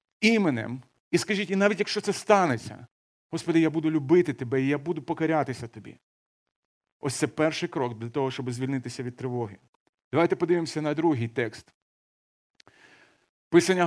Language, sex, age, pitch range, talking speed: Ukrainian, male, 40-59, 150-185 Hz, 145 wpm